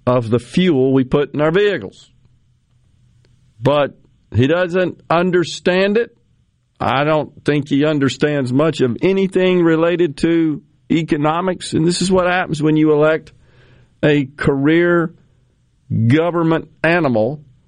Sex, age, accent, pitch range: male, 50-69, American, 125-160 Hz